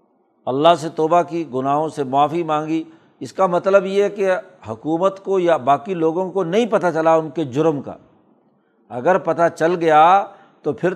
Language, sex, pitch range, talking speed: Urdu, male, 150-175 Hz, 175 wpm